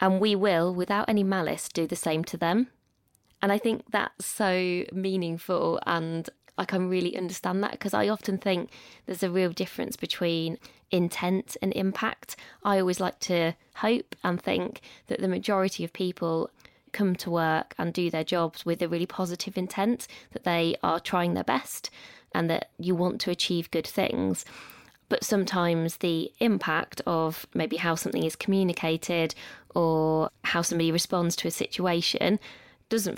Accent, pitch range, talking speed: British, 165-190 Hz, 165 wpm